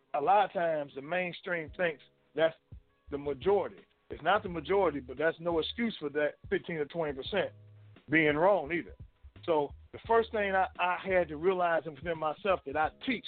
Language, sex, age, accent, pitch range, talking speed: English, male, 50-69, American, 140-180 Hz, 180 wpm